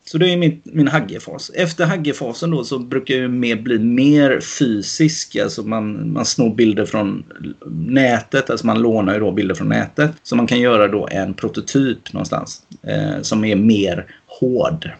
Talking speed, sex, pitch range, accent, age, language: 185 wpm, male, 110-140 Hz, native, 30-49, Swedish